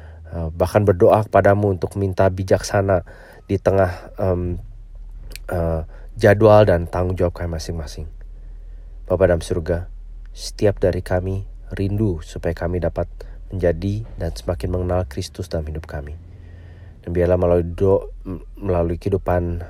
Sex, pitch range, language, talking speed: male, 85-100 Hz, Indonesian, 120 wpm